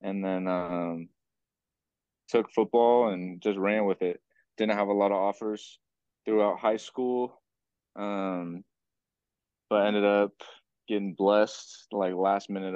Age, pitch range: 20-39, 95-105 Hz